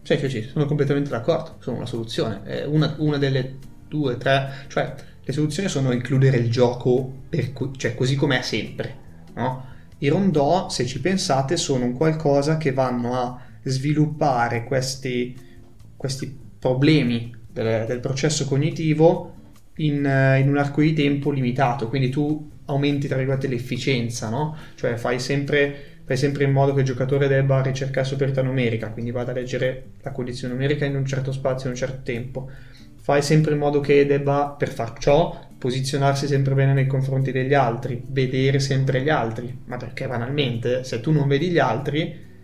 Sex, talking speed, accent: male, 170 wpm, native